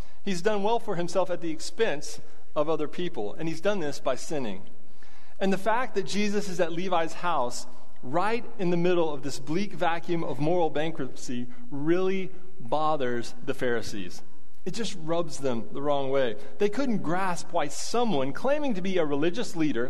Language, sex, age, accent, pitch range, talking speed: English, male, 30-49, American, 150-195 Hz, 180 wpm